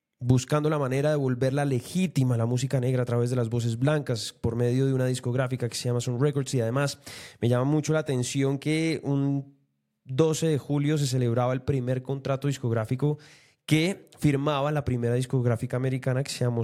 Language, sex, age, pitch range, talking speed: Spanish, male, 20-39, 125-150 Hz, 190 wpm